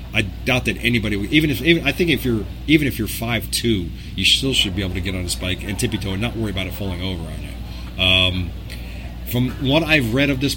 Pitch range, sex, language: 95-115 Hz, male, English